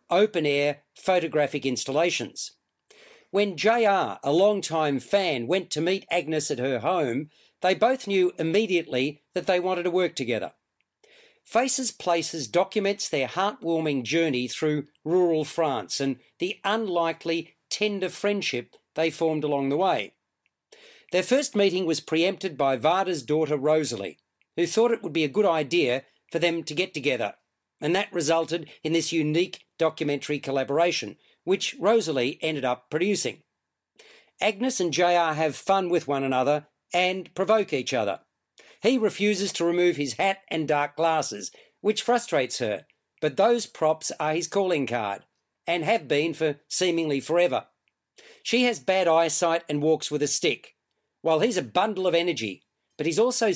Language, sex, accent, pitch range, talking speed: English, male, Australian, 150-195 Hz, 155 wpm